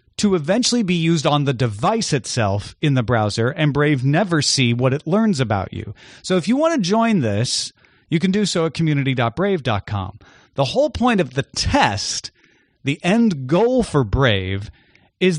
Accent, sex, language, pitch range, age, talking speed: American, male, English, 130-185 Hz, 30-49, 175 wpm